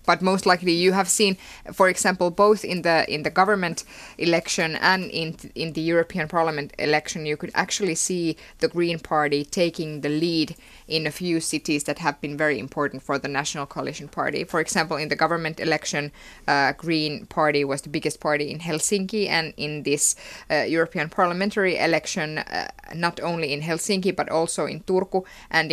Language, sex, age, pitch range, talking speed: Finnish, female, 20-39, 150-175 Hz, 185 wpm